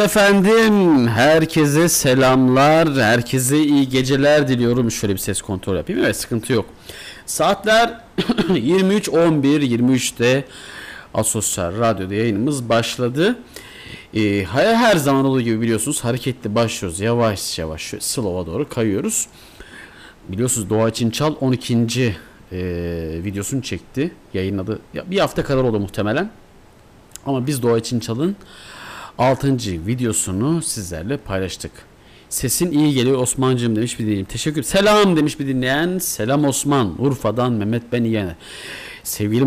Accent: native